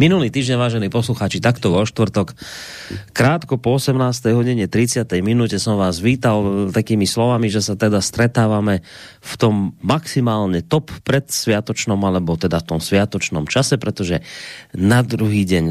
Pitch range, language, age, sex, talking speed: 95-135 Hz, Slovak, 30-49, male, 145 wpm